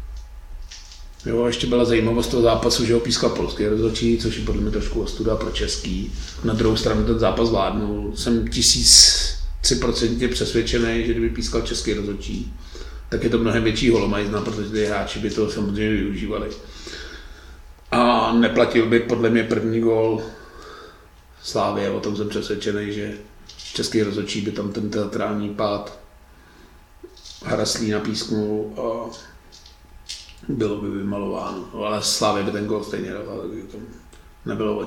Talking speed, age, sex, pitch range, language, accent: 140 wpm, 40-59, male, 105-115 Hz, Czech, native